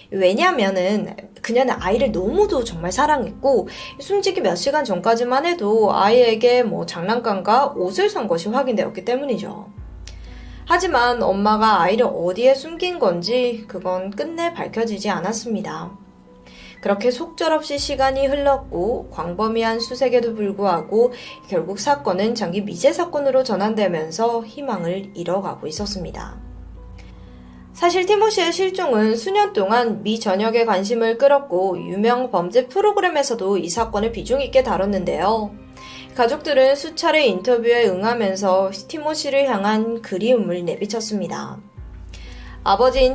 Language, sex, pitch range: Korean, female, 195-270 Hz